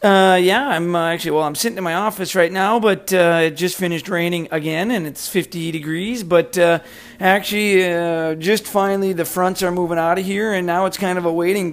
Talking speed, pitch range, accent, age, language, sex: 225 wpm, 150-175 Hz, American, 40-59, English, male